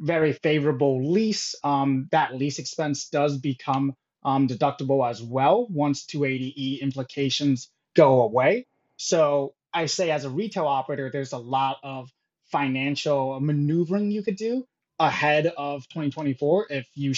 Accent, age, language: American, 20-39, English